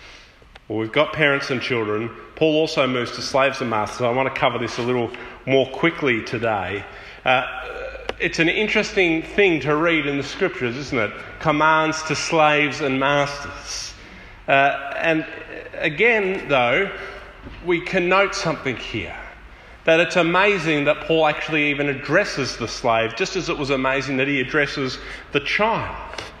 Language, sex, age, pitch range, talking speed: English, male, 30-49, 135-170 Hz, 155 wpm